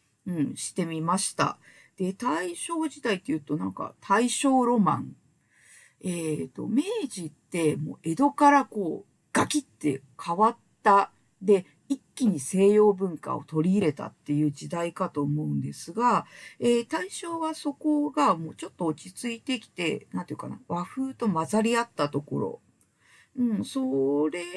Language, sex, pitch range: Japanese, female, 150-245 Hz